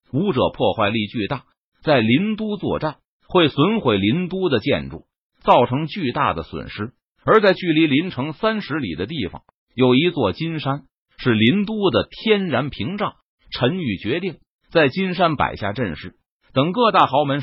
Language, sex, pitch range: Chinese, male, 120-185 Hz